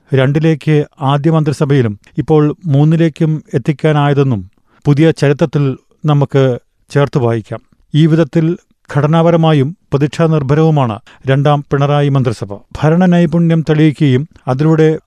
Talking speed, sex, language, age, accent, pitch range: 90 wpm, male, Malayalam, 40-59, native, 135-160 Hz